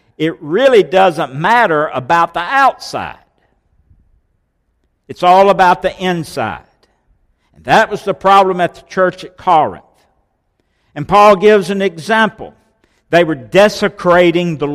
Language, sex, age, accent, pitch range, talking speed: English, male, 60-79, American, 140-185 Hz, 125 wpm